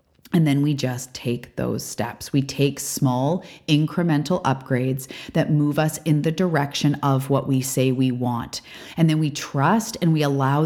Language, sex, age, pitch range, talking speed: English, female, 30-49, 135-165 Hz, 175 wpm